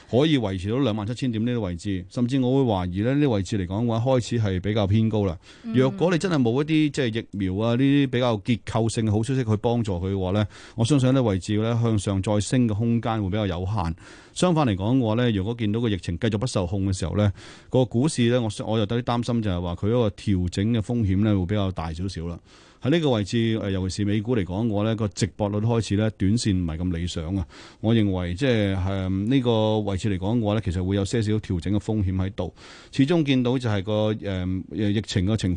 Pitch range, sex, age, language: 95-120 Hz, male, 30-49, Chinese